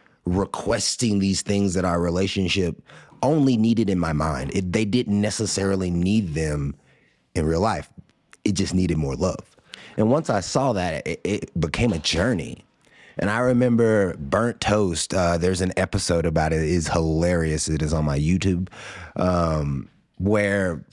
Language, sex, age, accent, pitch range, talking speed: English, male, 30-49, American, 85-110 Hz, 160 wpm